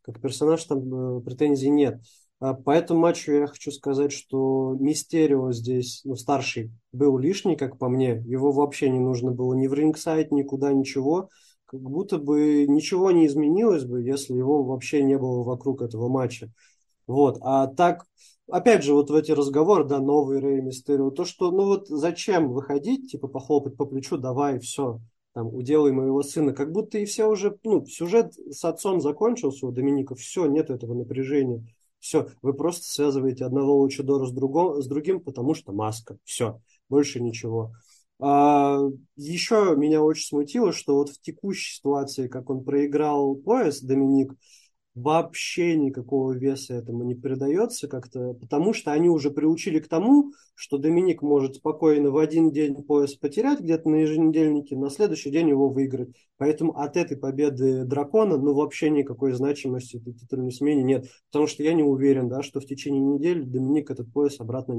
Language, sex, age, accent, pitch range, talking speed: Russian, male, 20-39, native, 130-155 Hz, 170 wpm